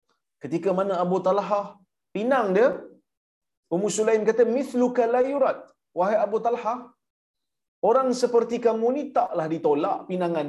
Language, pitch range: Malayalam, 180-240 Hz